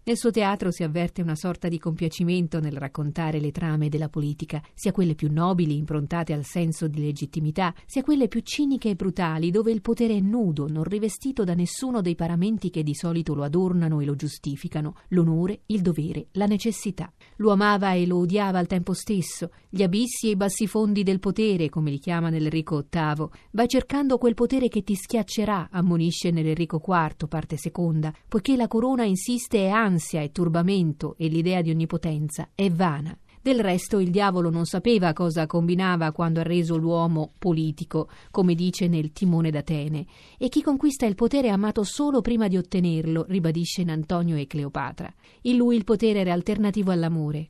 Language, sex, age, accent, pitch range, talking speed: Italian, female, 40-59, native, 160-210 Hz, 180 wpm